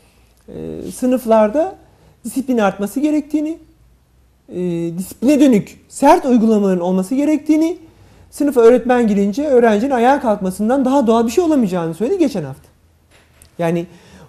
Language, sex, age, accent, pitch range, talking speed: Turkish, male, 40-59, native, 175-275 Hz, 105 wpm